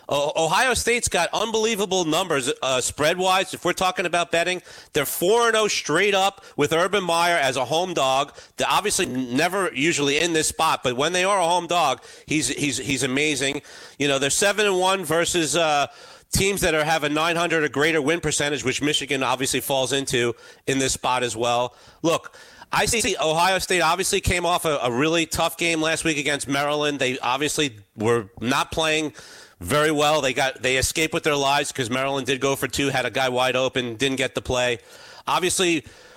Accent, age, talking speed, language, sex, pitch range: American, 40-59, 190 wpm, English, male, 135-175 Hz